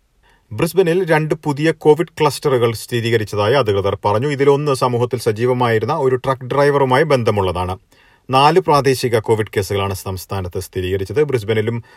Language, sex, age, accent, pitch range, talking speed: Malayalam, male, 40-59, native, 105-140 Hz, 110 wpm